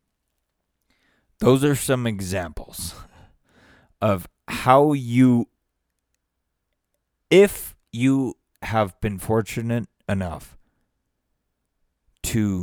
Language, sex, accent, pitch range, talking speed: English, male, American, 85-125 Hz, 65 wpm